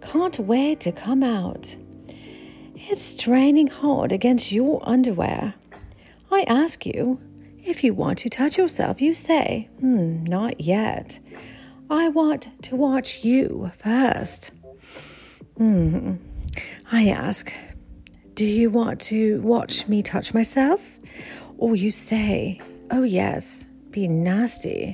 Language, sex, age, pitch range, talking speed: English, female, 40-59, 205-280 Hz, 120 wpm